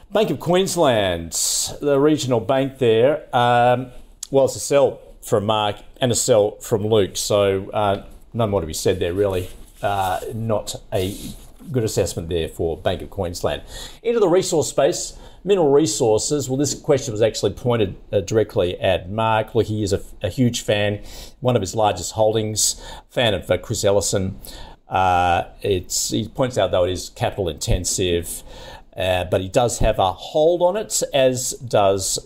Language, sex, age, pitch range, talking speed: English, male, 50-69, 105-140 Hz, 170 wpm